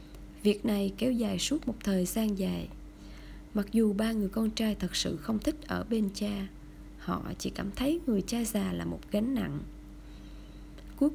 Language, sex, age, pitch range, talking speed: Vietnamese, female, 20-39, 200-245 Hz, 185 wpm